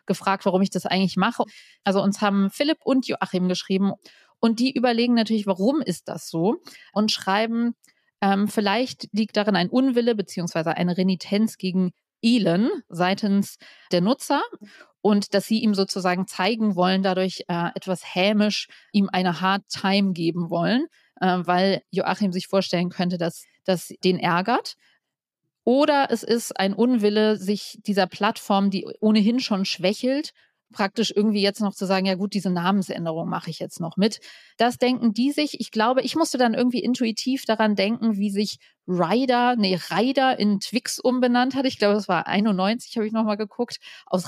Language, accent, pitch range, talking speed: German, German, 190-235 Hz, 165 wpm